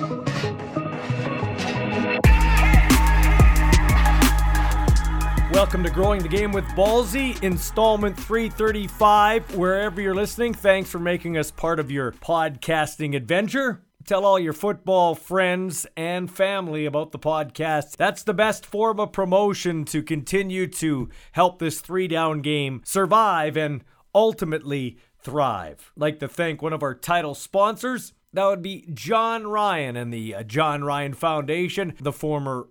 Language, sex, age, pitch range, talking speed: English, male, 40-59, 150-200 Hz, 125 wpm